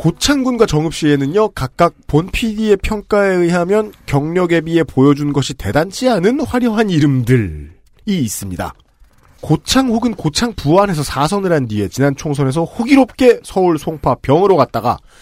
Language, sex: Korean, male